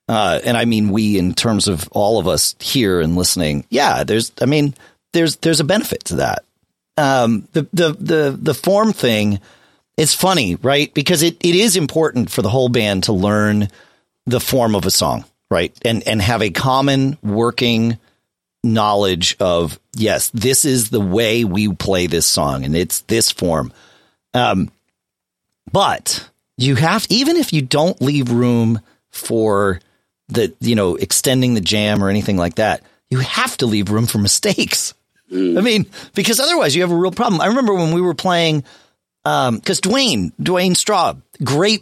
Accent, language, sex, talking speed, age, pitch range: American, English, male, 175 wpm, 40-59, 100-155 Hz